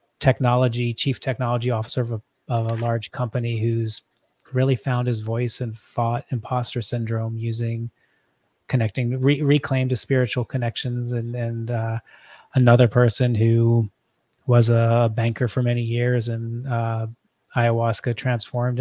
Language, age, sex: English, 30-49, male